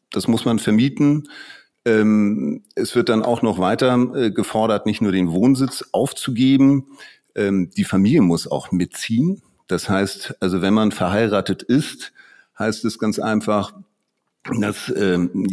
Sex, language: male, German